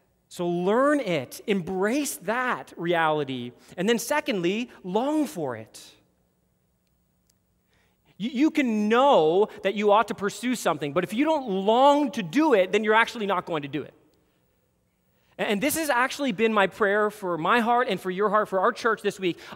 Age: 30-49